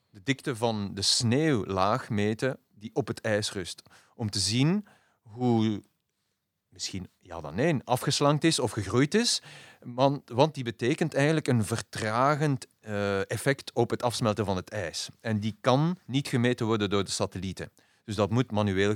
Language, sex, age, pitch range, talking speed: Dutch, male, 40-59, 95-125 Hz, 165 wpm